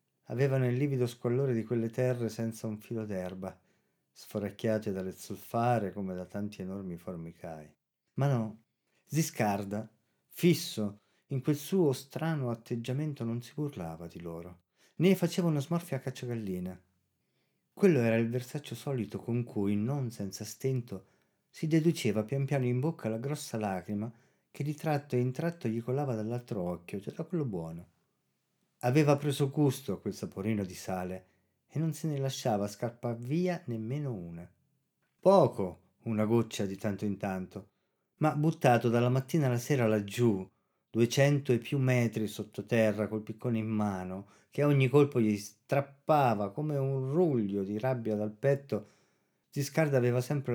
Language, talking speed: Italian, 150 wpm